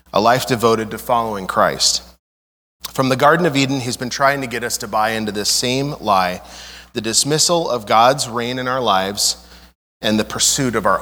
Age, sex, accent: 30-49, male, American